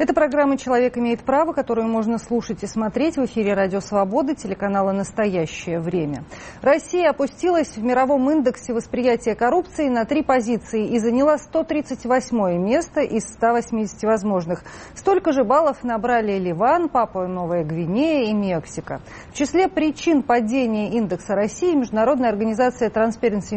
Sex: female